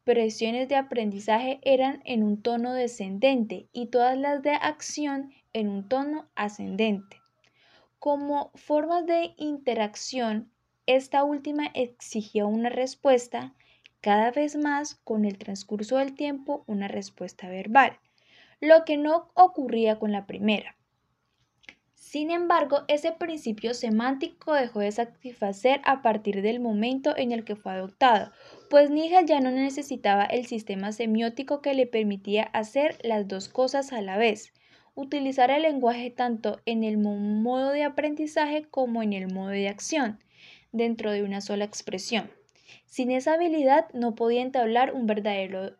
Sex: female